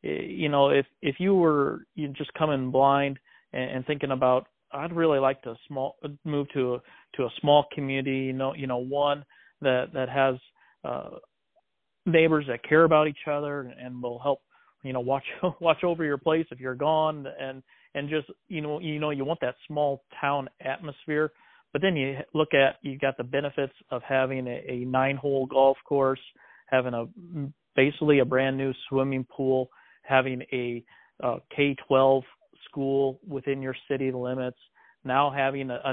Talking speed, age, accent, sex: 175 wpm, 40-59, American, male